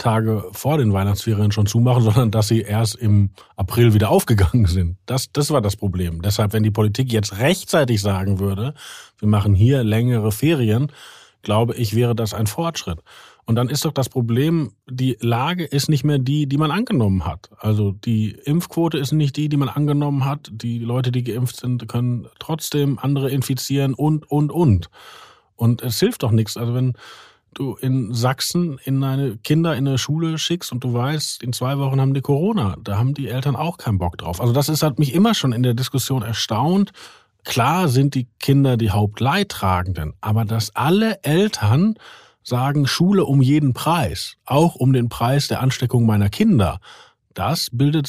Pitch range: 110-145 Hz